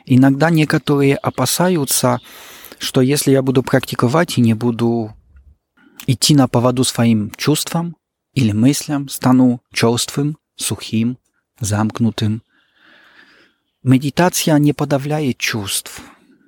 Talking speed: 95 wpm